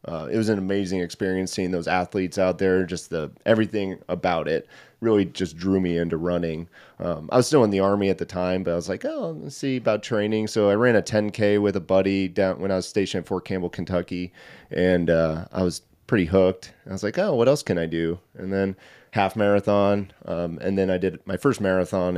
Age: 30-49